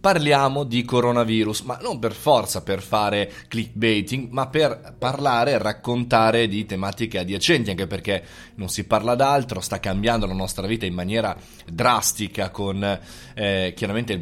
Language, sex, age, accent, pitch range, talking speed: Italian, male, 20-39, native, 100-125 Hz, 150 wpm